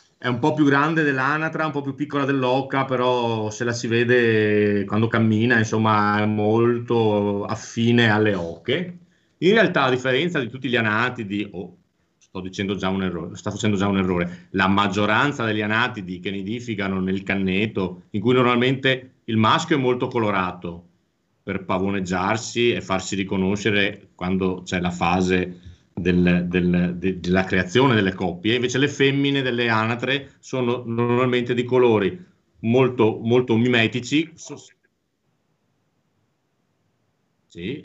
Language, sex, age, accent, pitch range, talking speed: Italian, male, 40-59, native, 100-135 Hz, 140 wpm